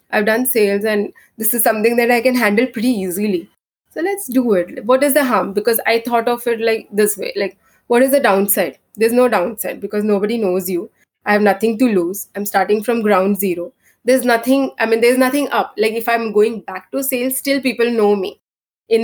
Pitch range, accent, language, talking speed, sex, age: 200-265 Hz, Indian, English, 220 wpm, female, 20-39